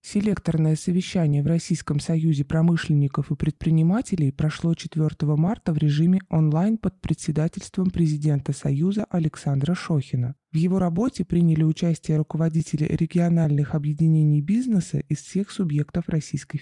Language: Russian